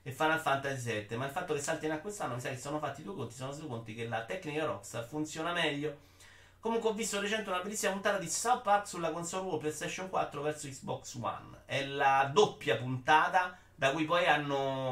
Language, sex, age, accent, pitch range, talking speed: Italian, male, 30-49, native, 125-185 Hz, 220 wpm